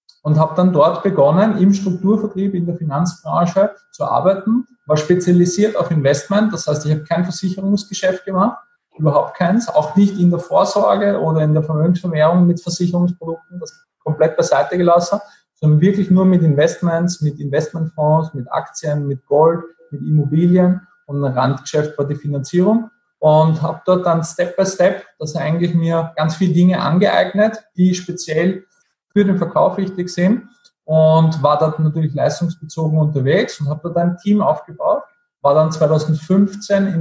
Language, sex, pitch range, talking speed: German, male, 155-195 Hz, 155 wpm